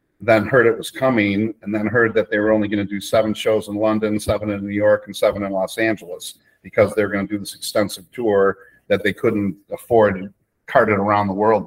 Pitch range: 100-110 Hz